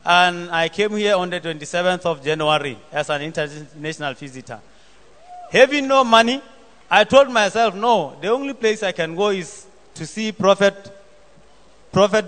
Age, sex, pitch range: 30-49, male, 160-215 Hz